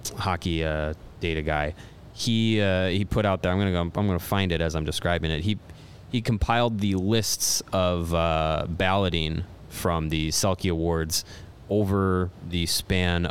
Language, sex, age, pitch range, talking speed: English, male, 20-39, 85-110 Hz, 160 wpm